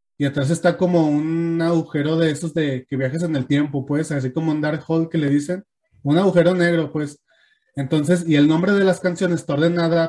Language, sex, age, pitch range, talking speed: Spanish, male, 20-39, 140-165 Hz, 215 wpm